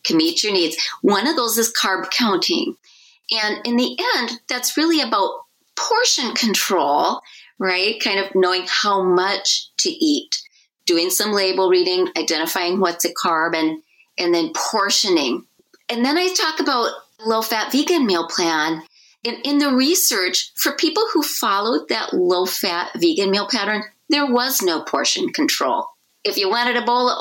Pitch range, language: 190-310 Hz, English